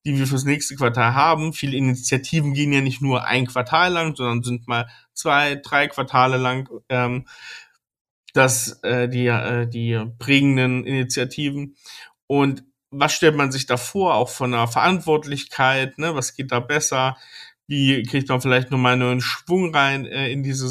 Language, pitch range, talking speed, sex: German, 125-145 Hz, 170 wpm, male